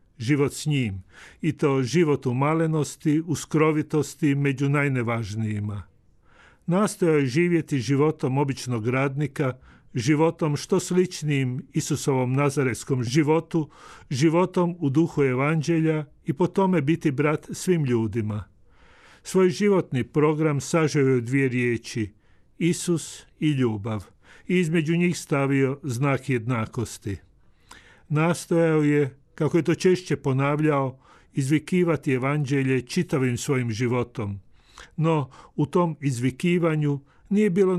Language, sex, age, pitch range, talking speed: Croatian, male, 50-69, 125-155 Hz, 110 wpm